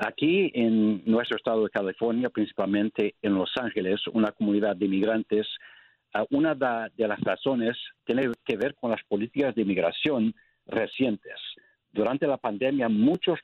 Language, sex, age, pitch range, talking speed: Spanish, male, 60-79, 105-155 Hz, 140 wpm